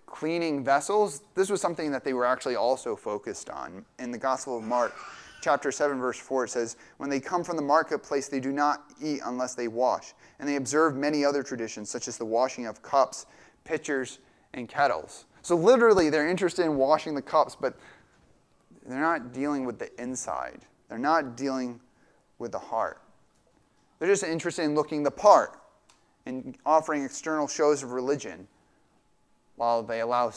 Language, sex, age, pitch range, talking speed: English, male, 30-49, 130-160 Hz, 175 wpm